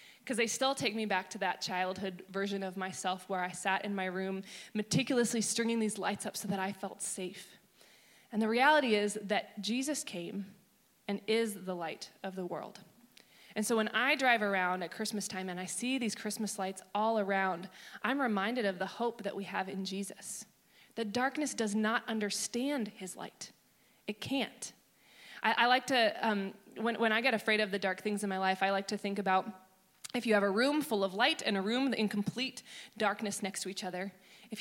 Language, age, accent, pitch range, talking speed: English, 20-39, American, 190-225 Hz, 205 wpm